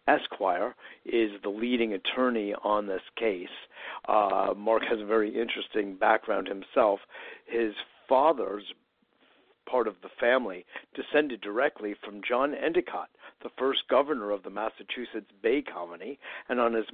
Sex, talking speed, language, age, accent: male, 135 wpm, English, 60-79, American